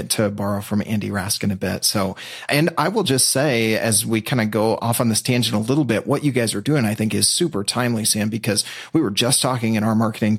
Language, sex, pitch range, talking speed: English, male, 110-135 Hz, 255 wpm